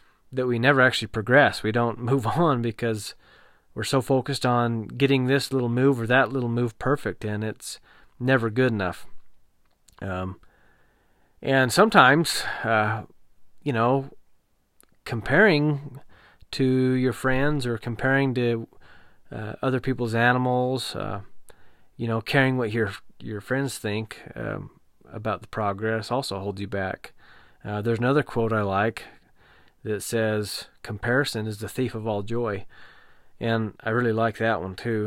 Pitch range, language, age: 110-130 Hz, English, 30-49